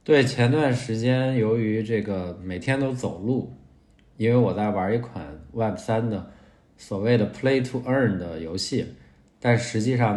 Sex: male